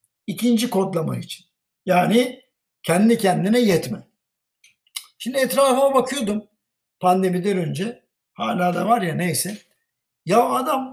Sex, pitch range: male, 185-235 Hz